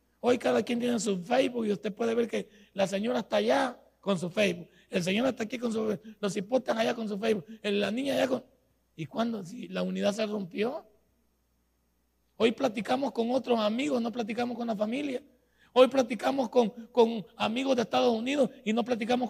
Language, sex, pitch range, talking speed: Spanish, male, 185-250 Hz, 195 wpm